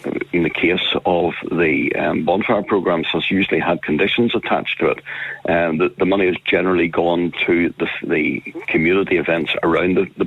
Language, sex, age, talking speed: English, male, 60-79, 175 wpm